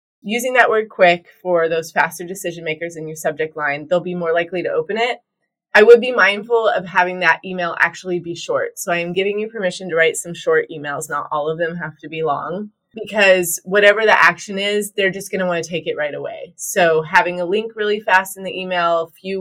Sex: female